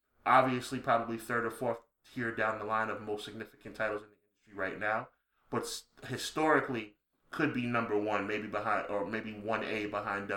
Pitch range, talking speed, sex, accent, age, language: 105-130 Hz, 180 wpm, male, American, 20-39, English